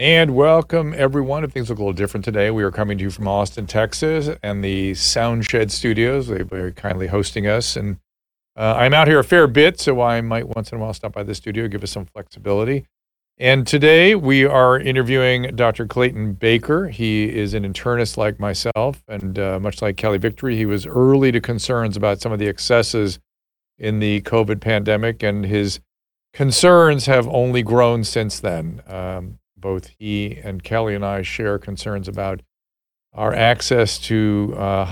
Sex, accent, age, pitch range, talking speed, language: male, American, 50-69, 100-125 Hz, 185 wpm, English